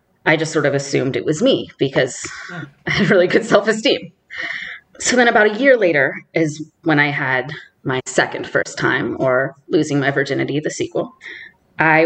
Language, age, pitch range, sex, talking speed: English, 20-39, 145-190 Hz, female, 175 wpm